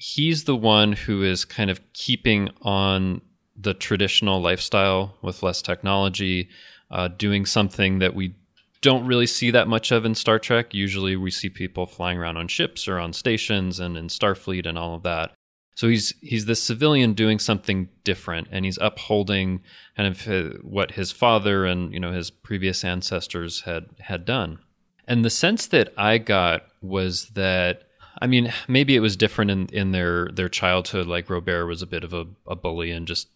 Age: 30-49